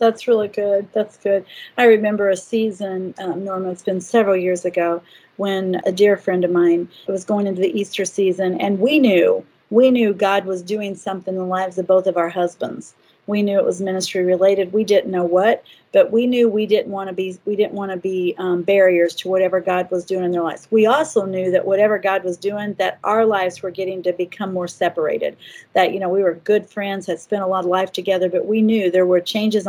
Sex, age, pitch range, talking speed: female, 40-59, 185-215 Hz, 230 wpm